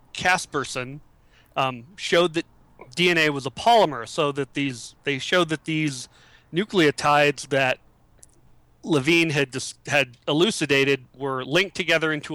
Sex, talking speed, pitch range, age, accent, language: male, 125 wpm, 130-170 Hz, 30-49, American, English